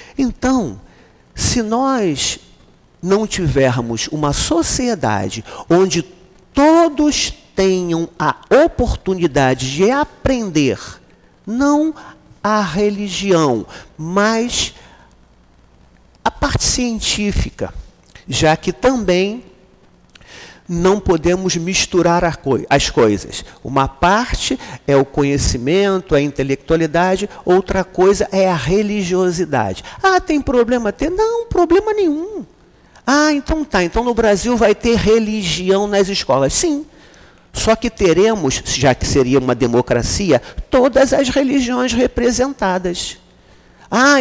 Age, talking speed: 50-69, 100 wpm